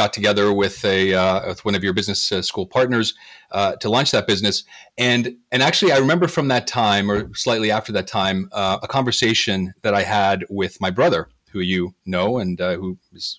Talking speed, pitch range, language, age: 210 wpm, 100-125 Hz, English, 40-59